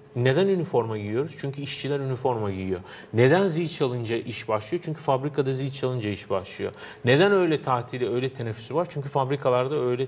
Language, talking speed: Turkish, 160 wpm